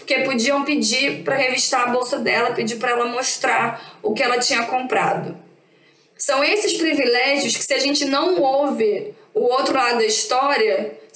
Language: Portuguese